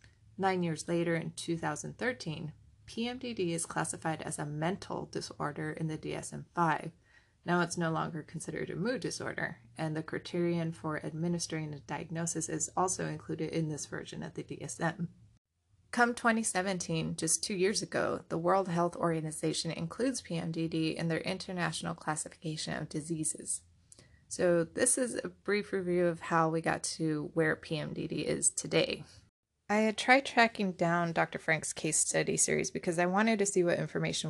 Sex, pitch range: female, 155-185 Hz